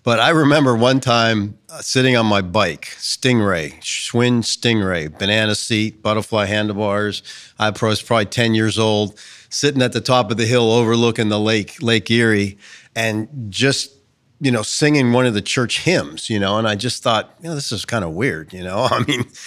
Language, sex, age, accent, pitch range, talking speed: English, male, 40-59, American, 105-125 Hz, 190 wpm